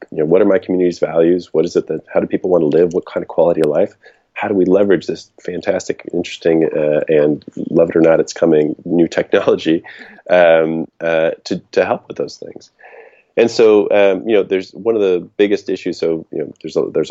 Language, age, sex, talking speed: English, 30-49, male, 230 wpm